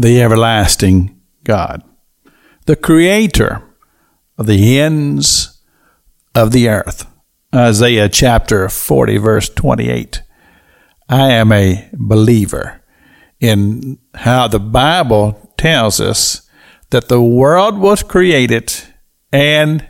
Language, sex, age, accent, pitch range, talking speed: English, male, 60-79, American, 105-150 Hz, 95 wpm